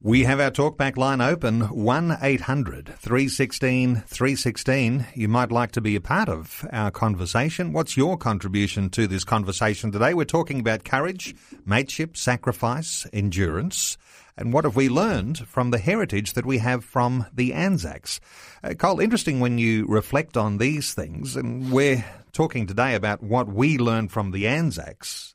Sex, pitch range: male, 105-135 Hz